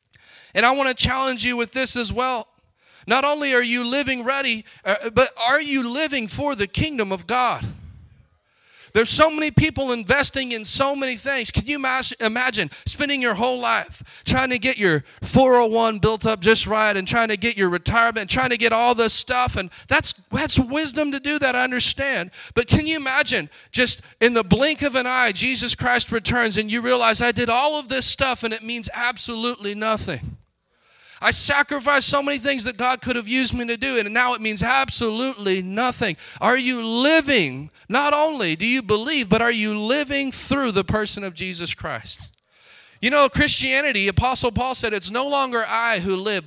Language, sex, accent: English, male, American